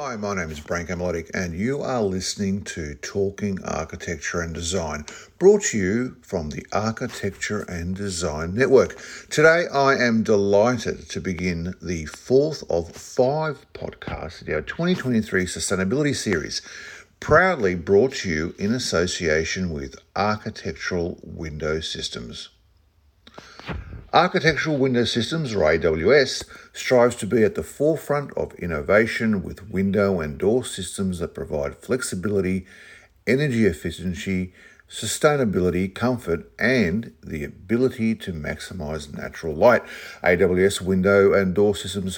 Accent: Australian